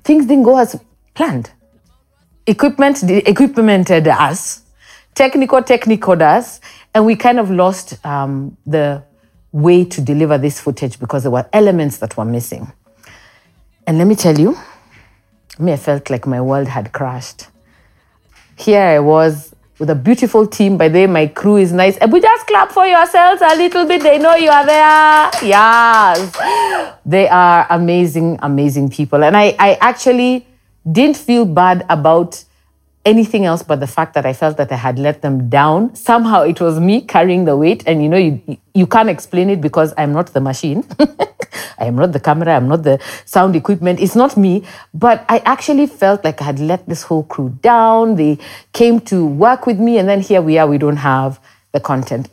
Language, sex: English, female